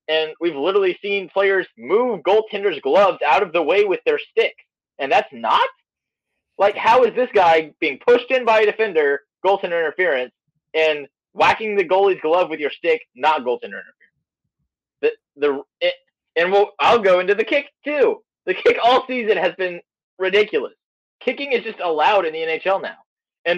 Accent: American